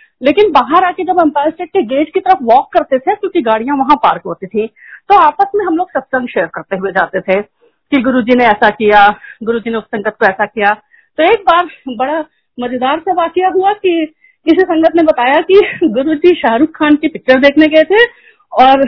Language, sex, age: Hindi, female, 50-69